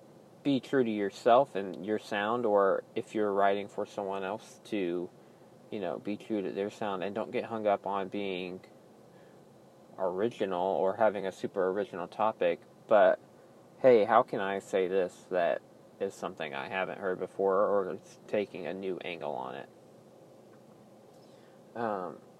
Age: 20-39